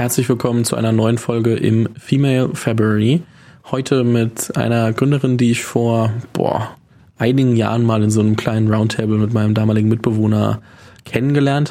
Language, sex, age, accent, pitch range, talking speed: German, male, 20-39, German, 110-130 Hz, 155 wpm